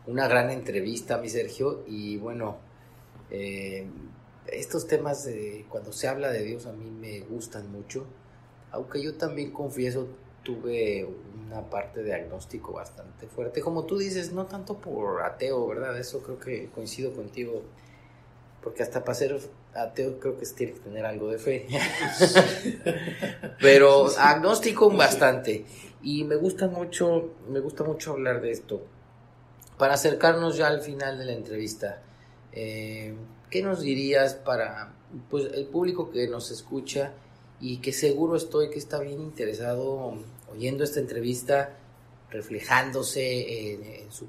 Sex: male